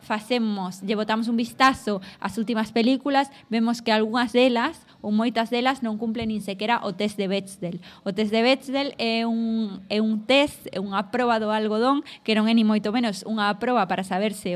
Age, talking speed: 20-39, 200 wpm